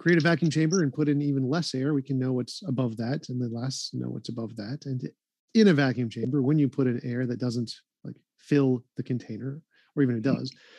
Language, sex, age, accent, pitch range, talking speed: English, male, 40-59, American, 125-150 Hz, 240 wpm